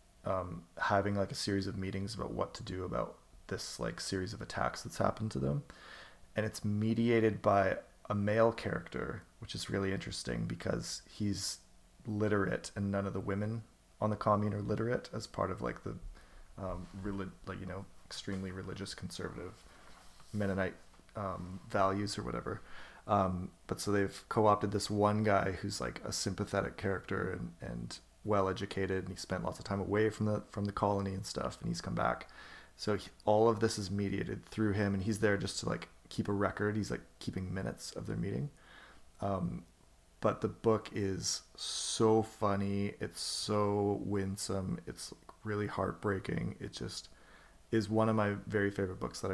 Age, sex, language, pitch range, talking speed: 20-39, male, English, 95-105 Hz, 175 wpm